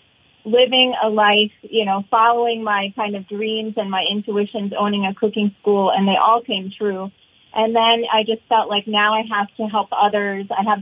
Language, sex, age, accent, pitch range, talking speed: English, female, 30-49, American, 205-230 Hz, 200 wpm